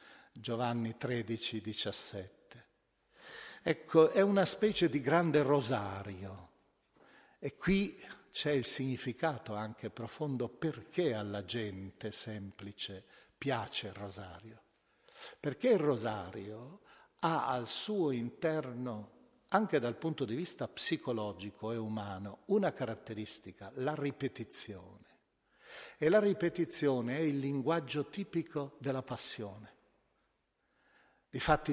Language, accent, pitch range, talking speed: Italian, native, 105-160 Hz, 100 wpm